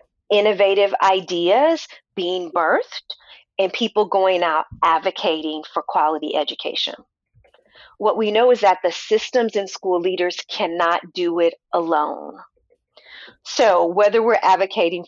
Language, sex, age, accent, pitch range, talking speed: English, female, 40-59, American, 175-230 Hz, 120 wpm